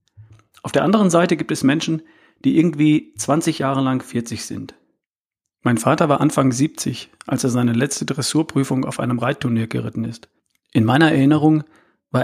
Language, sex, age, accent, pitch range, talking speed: German, male, 40-59, German, 120-150 Hz, 160 wpm